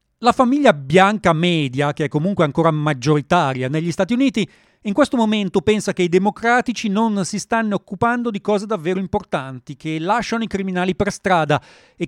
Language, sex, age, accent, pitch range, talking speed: Italian, male, 40-59, native, 145-210 Hz, 170 wpm